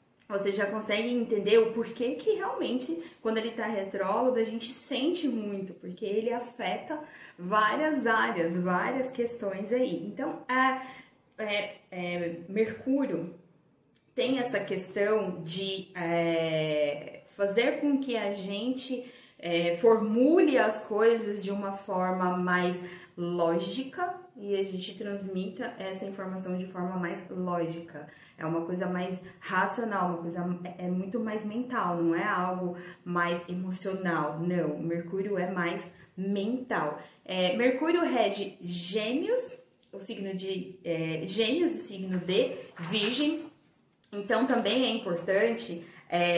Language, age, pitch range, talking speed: Portuguese, 20-39, 180-235 Hz, 120 wpm